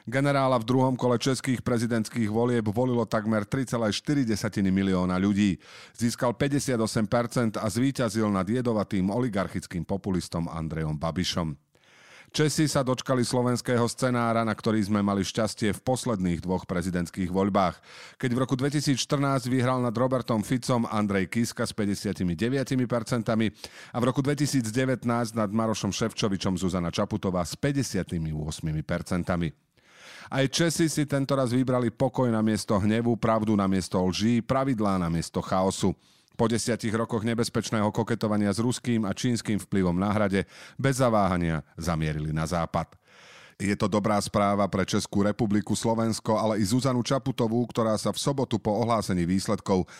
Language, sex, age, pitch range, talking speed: Slovak, male, 40-59, 95-125 Hz, 135 wpm